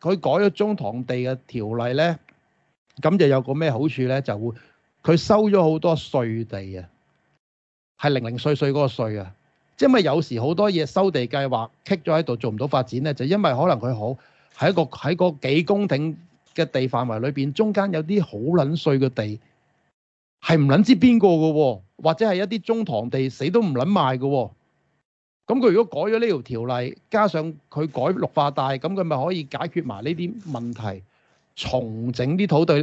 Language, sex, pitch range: Chinese, male, 125-180 Hz